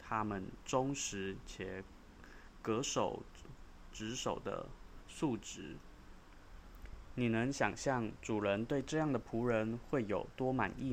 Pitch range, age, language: 95-120 Hz, 20-39, Chinese